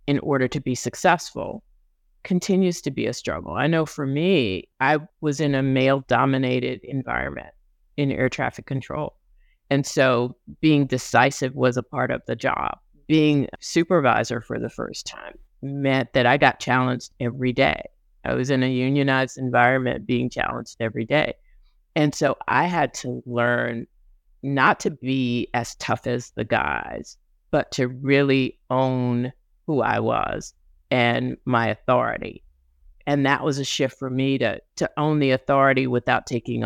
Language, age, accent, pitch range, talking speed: English, 40-59, American, 125-150 Hz, 155 wpm